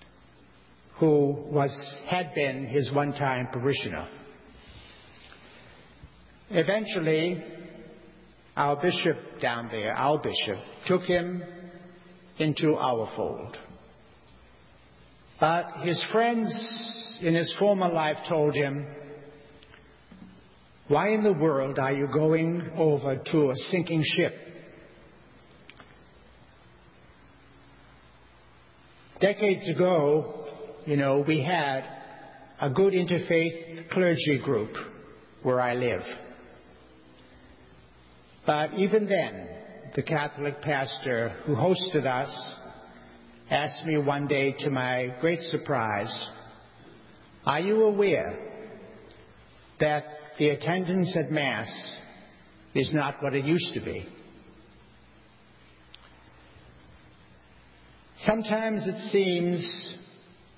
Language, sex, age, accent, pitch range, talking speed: English, male, 60-79, American, 125-175 Hz, 90 wpm